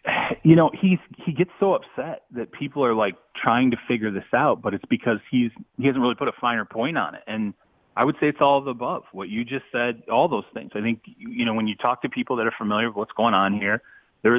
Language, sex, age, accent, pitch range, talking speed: English, male, 30-49, American, 105-130 Hz, 265 wpm